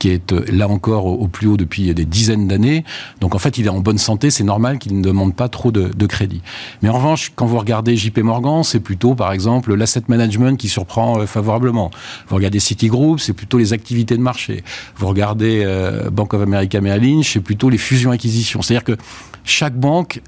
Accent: French